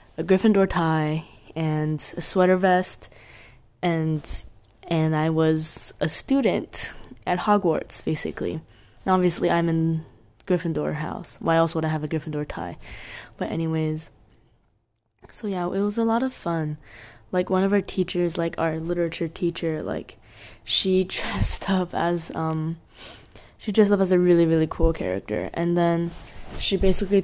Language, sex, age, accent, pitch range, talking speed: English, female, 10-29, American, 155-180 Hz, 150 wpm